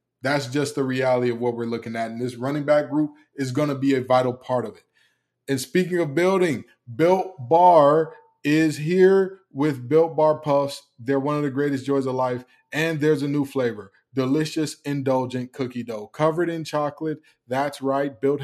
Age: 20-39